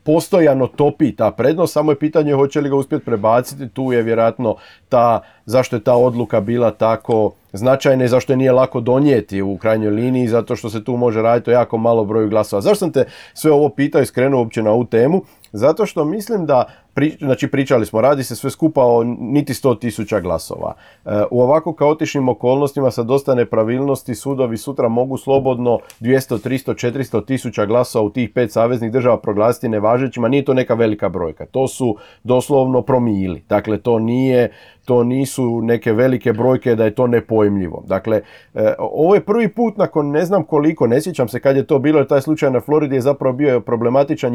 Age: 40-59